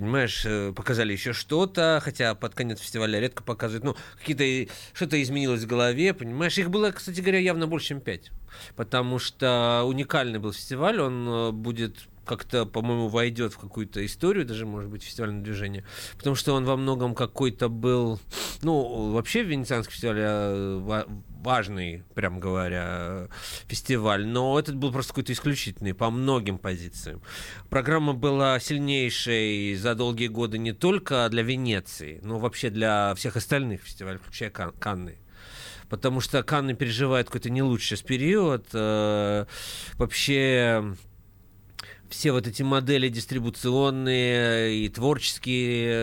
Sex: male